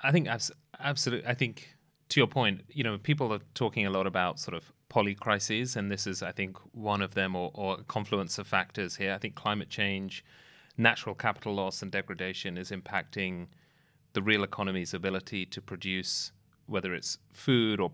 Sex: male